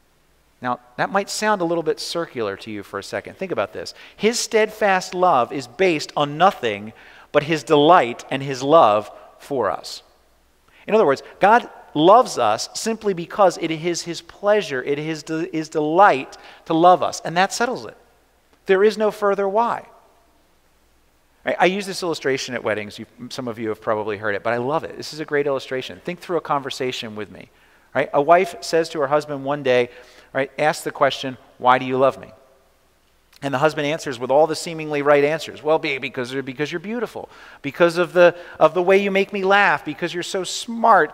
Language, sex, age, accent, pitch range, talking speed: English, male, 40-59, American, 140-195 Hz, 195 wpm